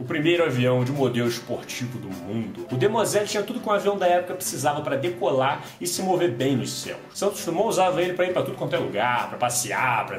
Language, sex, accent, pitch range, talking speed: Portuguese, male, Brazilian, 130-200 Hz, 240 wpm